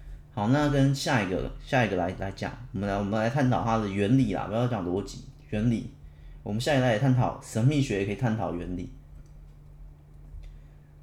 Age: 20-39